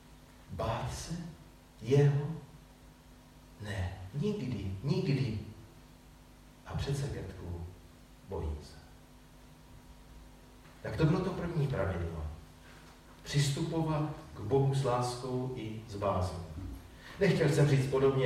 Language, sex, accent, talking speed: Czech, male, native, 95 wpm